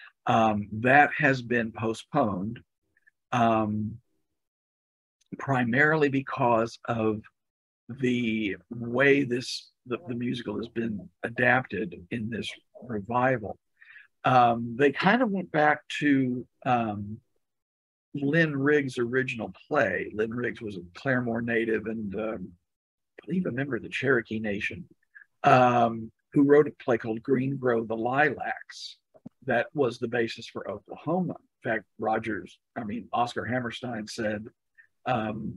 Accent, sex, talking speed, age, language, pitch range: American, male, 125 wpm, 50-69, English, 115-140 Hz